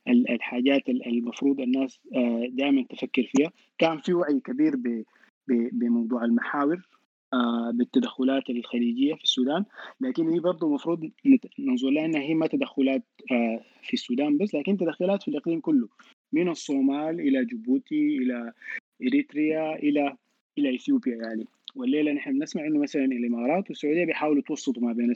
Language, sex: Arabic, male